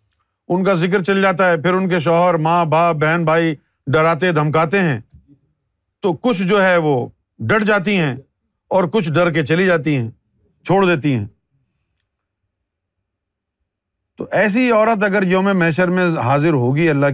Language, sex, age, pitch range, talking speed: Urdu, male, 50-69, 120-190 Hz, 160 wpm